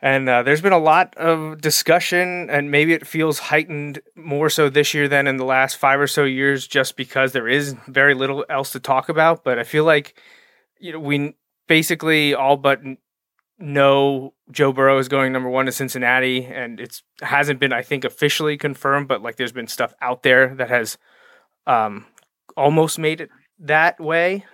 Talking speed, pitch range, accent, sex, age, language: 190 wpm, 130-160 Hz, American, male, 30-49, English